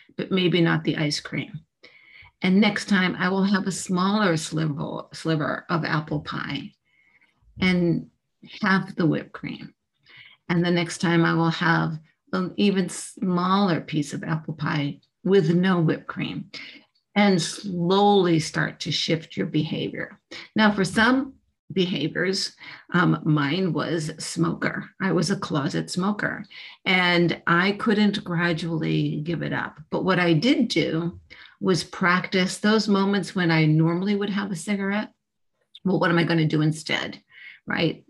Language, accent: English, American